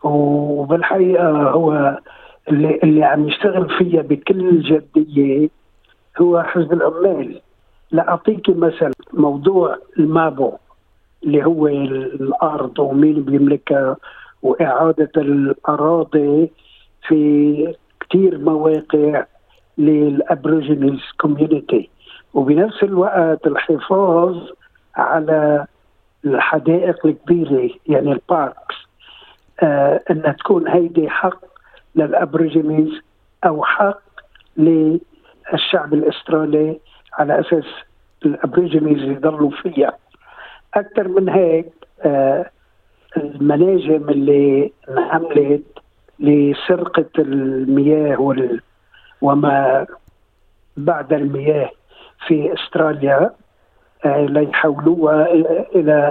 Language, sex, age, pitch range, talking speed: Arabic, male, 50-69, 145-165 Hz, 75 wpm